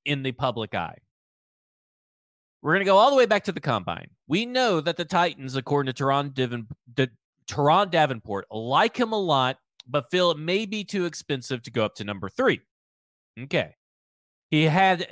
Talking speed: 185 wpm